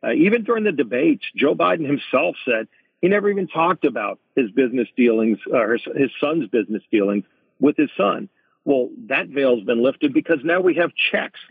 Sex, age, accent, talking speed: male, 50-69, American, 190 wpm